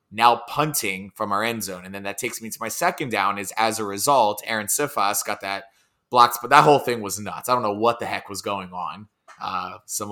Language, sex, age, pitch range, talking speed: English, male, 20-39, 100-120 Hz, 245 wpm